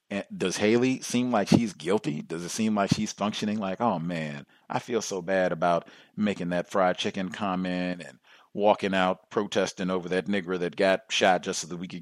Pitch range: 95-145 Hz